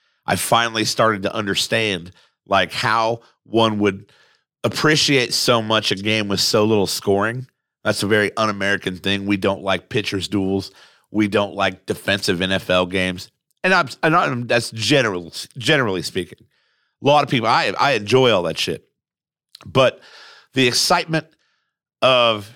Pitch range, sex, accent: 100-130 Hz, male, American